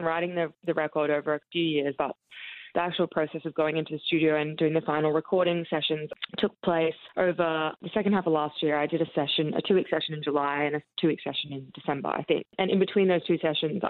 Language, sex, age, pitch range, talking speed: English, female, 20-39, 150-180 Hz, 240 wpm